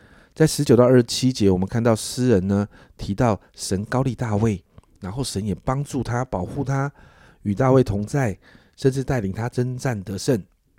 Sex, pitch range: male, 95-130 Hz